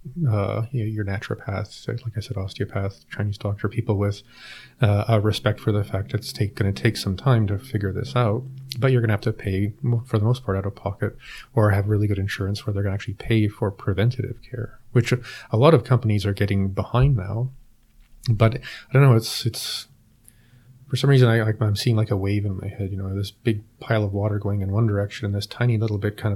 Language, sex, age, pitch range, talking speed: English, male, 30-49, 100-120 Hz, 230 wpm